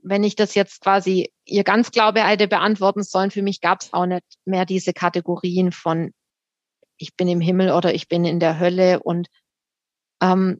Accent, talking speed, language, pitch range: German, 180 wpm, German, 200-240 Hz